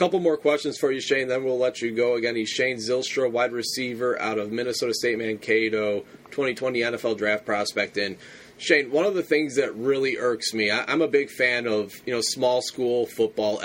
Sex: male